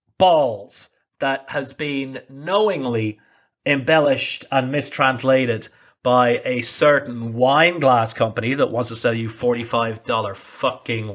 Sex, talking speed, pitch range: male, 115 wpm, 125-165 Hz